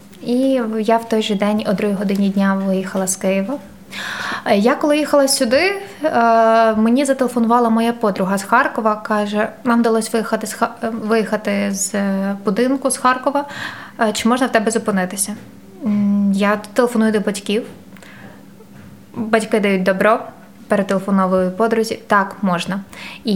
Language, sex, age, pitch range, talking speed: Ukrainian, female, 20-39, 205-235 Hz, 130 wpm